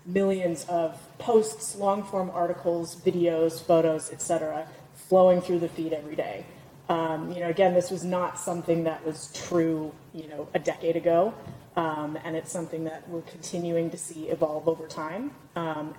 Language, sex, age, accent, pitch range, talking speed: English, female, 30-49, American, 160-180 Hz, 165 wpm